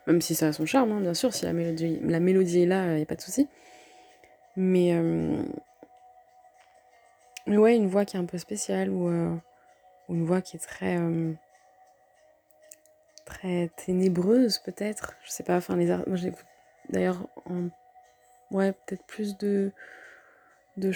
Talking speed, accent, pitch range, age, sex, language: 170 wpm, French, 160-195 Hz, 20-39, female, French